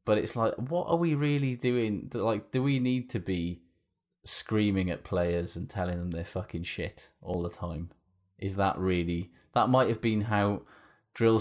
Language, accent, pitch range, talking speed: English, British, 85-105 Hz, 185 wpm